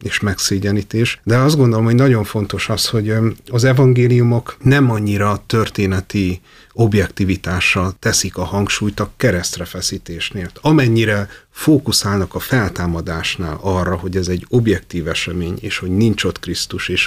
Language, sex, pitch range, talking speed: Hungarian, male, 95-110 Hz, 130 wpm